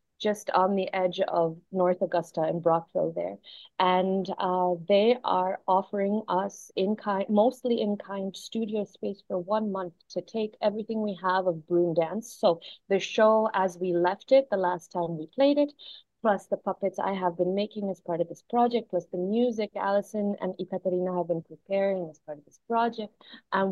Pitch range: 180-215 Hz